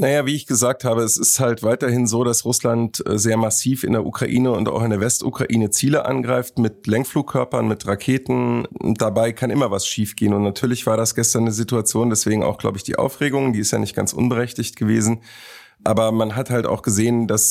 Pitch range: 105-120 Hz